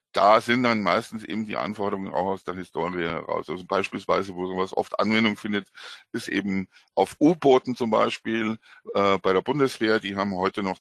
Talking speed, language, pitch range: 185 wpm, German, 100-120 Hz